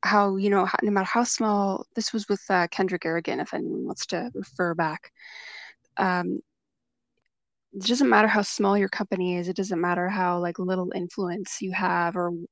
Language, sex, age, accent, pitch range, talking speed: English, female, 20-39, American, 175-210 Hz, 180 wpm